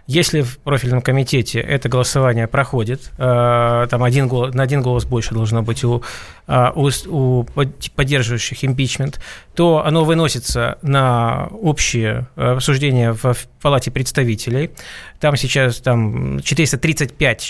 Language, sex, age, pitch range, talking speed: Russian, male, 20-39, 125-150 Hz, 105 wpm